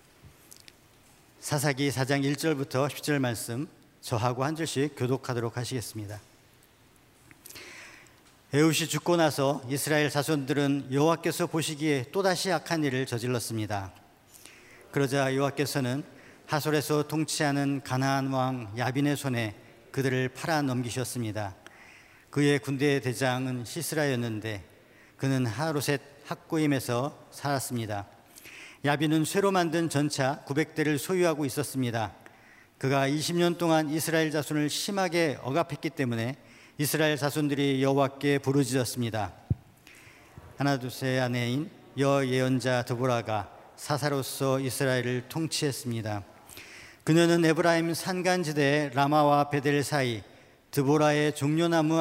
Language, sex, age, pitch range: Korean, male, 50-69, 125-150 Hz